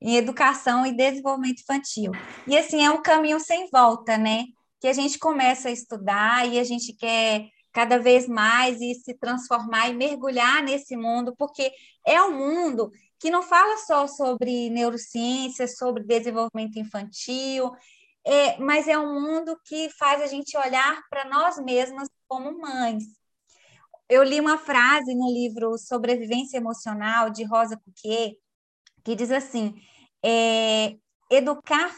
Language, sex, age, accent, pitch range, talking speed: Portuguese, female, 20-39, Brazilian, 235-285 Hz, 140 wpm